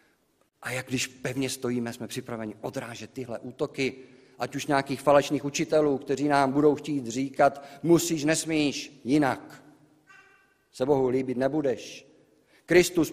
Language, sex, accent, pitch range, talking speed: Czech, male, native, 100-125 Hz, 130 wpm